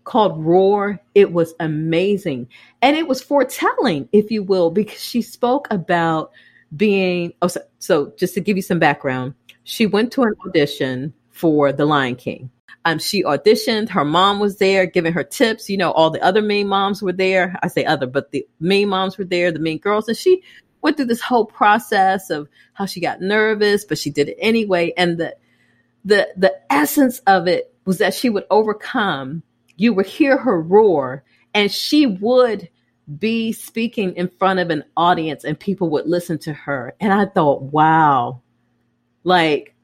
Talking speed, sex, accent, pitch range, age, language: 180 wpm, female, American, 165-220 Hz, 40-59, English